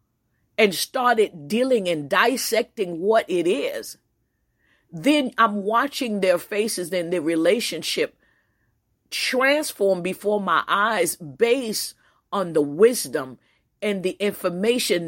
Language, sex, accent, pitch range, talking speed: English, female, American, 165-225 Hz, 105 wpm